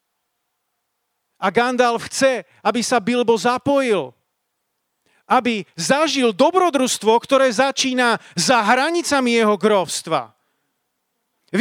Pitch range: 225-285 Hz